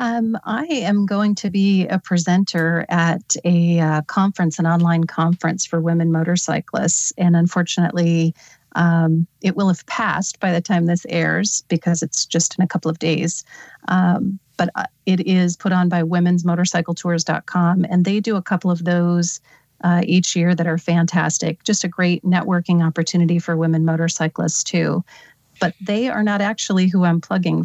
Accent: American